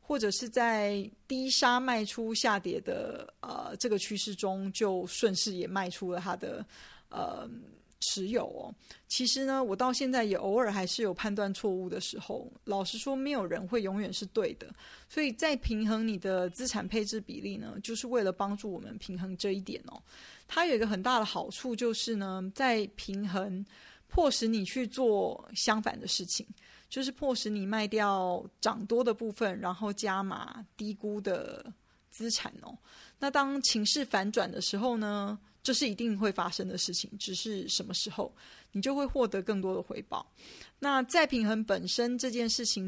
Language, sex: Chinese, female